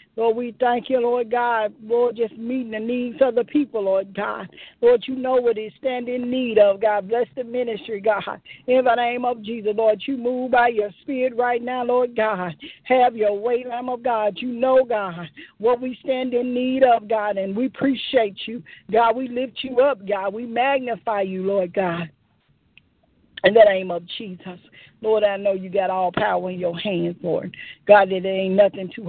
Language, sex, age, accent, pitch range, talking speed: English, female, 50-69, American, 190-240 Hz, 200 wpm